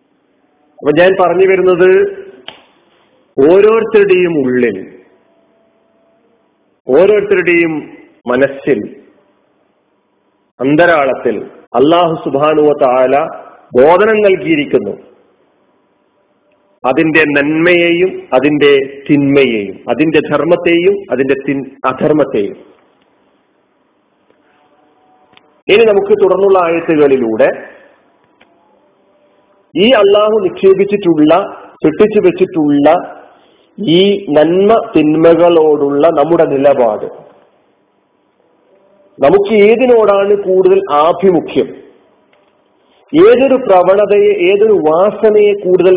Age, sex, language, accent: 40-59, male, Malayalam, native